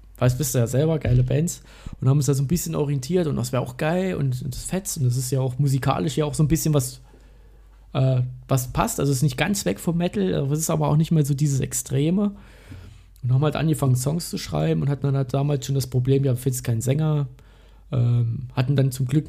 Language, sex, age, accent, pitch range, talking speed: German, male, 20-39, German, 125-150 Hz, 250 wpm